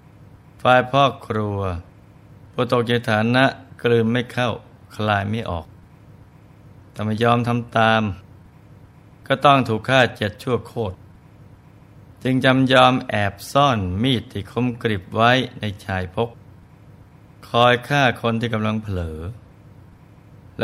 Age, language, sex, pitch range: 20-39, Thai, male, 100-130 Hz